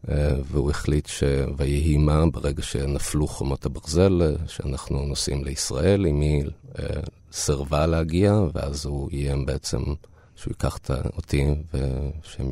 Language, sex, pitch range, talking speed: Hebrew, male, 70-85 Hz, 130 wpm